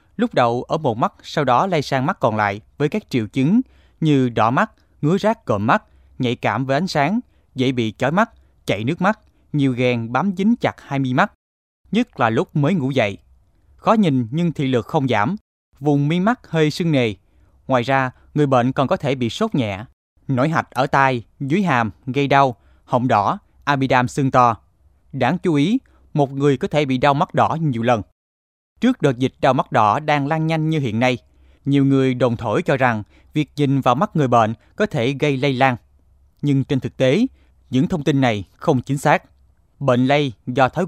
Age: 20-39